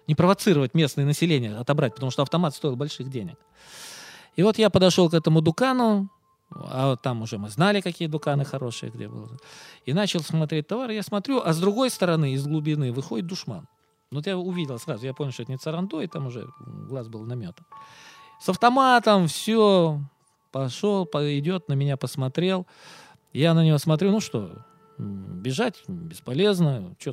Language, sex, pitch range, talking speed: Russian, male, 130-180 Hz, 165 wpm